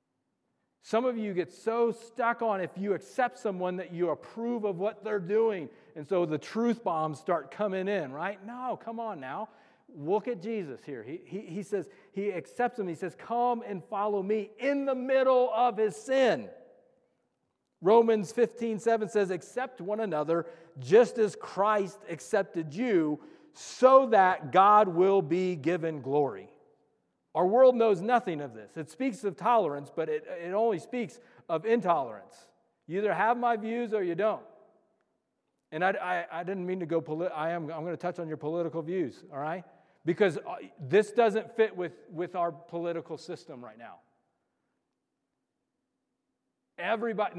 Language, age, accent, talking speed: English, 40-59, American, 165 wpm